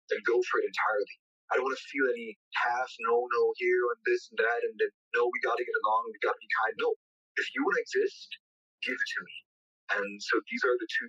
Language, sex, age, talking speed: English, male, 30-49, 260 wpm